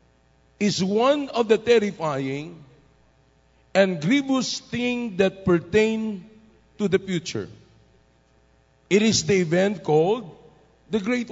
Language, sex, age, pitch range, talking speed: English, male, 50-69, 165-235 Hz, 105 wpm